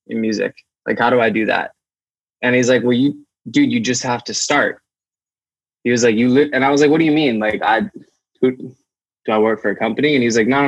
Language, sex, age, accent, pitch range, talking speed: English, male, 20-39, American, 110-135 Hz, 260 wpm